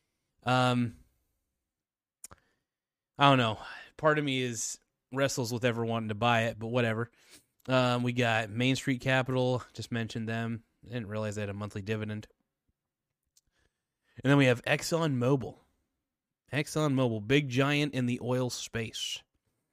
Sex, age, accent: male, 20-39, American